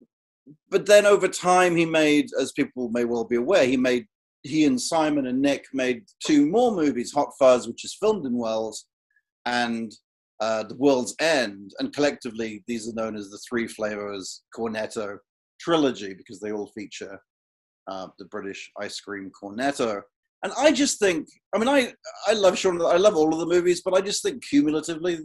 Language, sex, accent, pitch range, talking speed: English, male, British, 110-150 Hz, 185 wpm